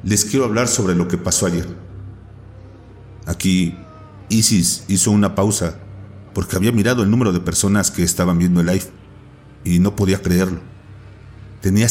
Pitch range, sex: 95-115 Hz, male